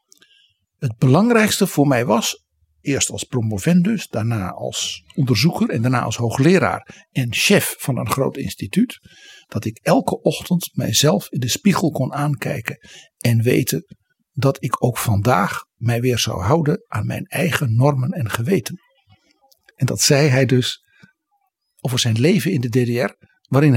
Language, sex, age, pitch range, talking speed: Dutch, male, 60-79, 115-165 Hz, 150 wpm